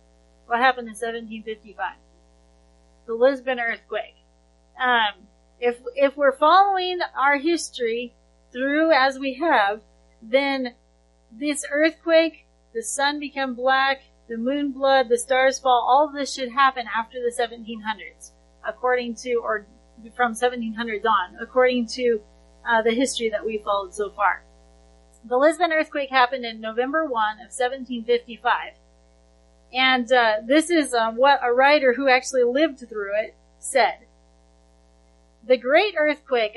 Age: 40-59